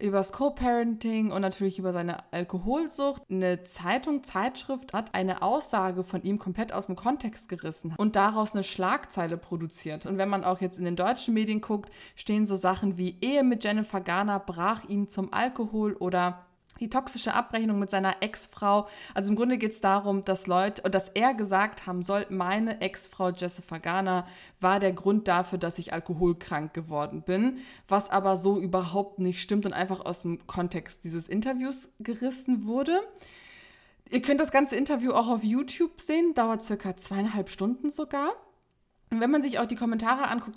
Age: 20-39